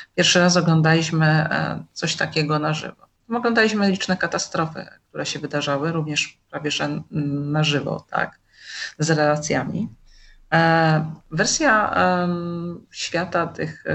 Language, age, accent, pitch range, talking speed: Polish, 40-59, native, 155-185 Hz, 105 wpm